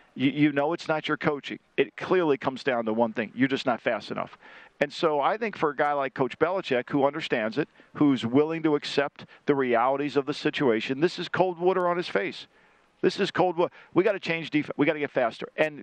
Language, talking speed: English, 235 wpm